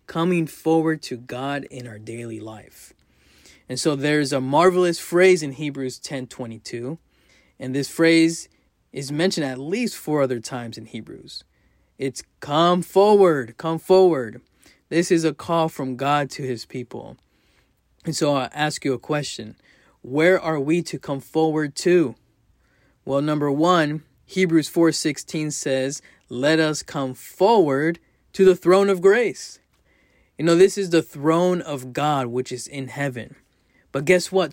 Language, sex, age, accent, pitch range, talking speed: English, male, 20-39, American, 135-170 Hz, 150 wpm